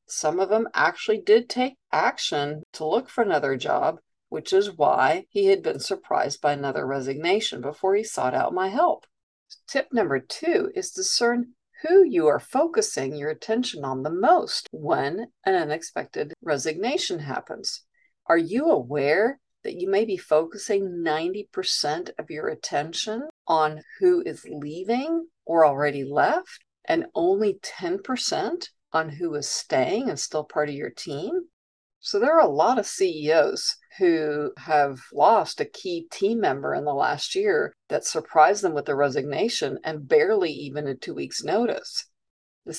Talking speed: 155 wpm